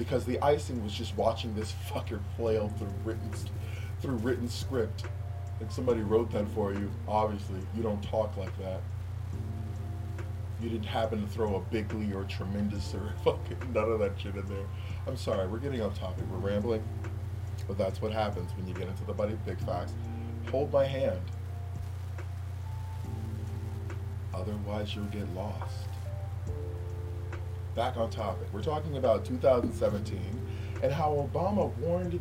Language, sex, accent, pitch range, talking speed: English, male, American, 95-105 Hz, 155 wpm